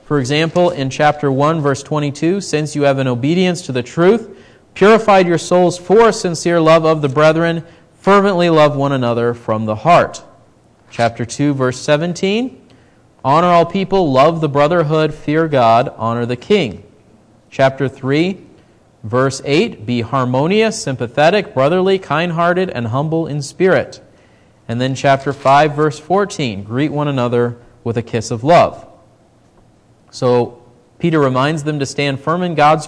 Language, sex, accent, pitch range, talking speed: English, male, American, 130-175 Hz, 150 wpm